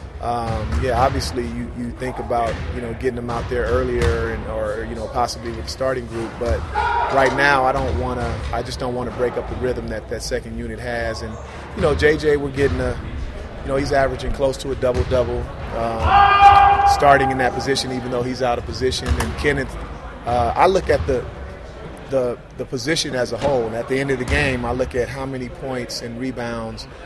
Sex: male